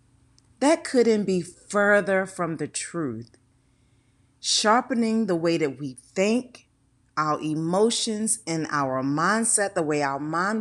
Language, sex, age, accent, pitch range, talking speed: English, female, 40-59, American, 135-220 Hz, 125 wpm